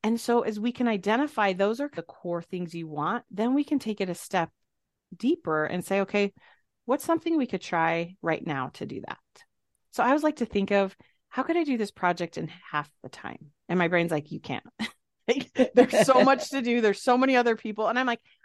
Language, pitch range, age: English, 170-240 Hz, 30-49